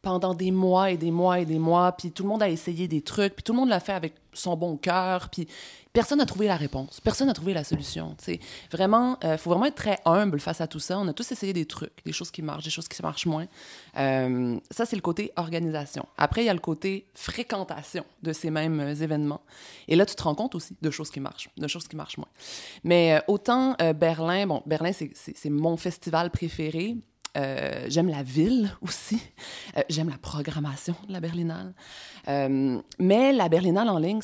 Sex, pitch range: female, 155-195 Hz